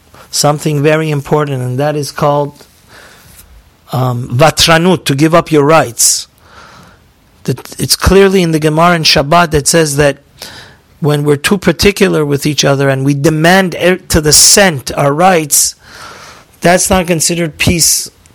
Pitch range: 140-165 Hz